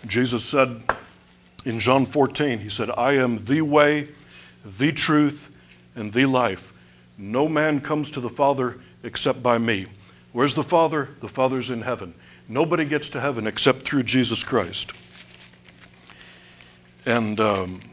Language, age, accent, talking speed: English, 60-79, American, 135 wpm